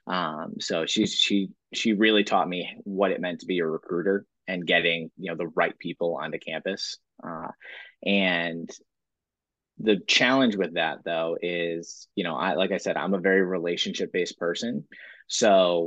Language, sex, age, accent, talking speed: English, male, 20-39, American, 175 wpm